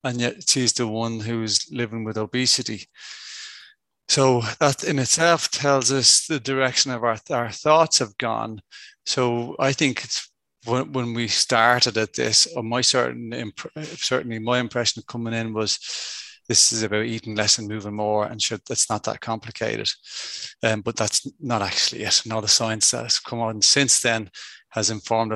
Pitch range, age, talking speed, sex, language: 115-140 Hz, 30-49, 175 wpm, male, English